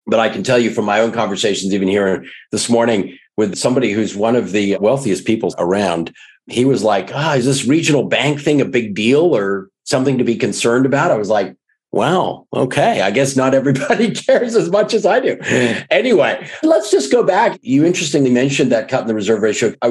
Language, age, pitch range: English, 50-69, 130-185 Hz